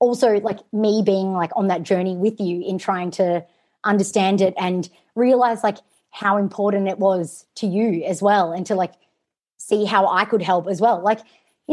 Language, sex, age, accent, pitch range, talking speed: English, female, 30-49, Australian, 195-250 Hz, 195 wpm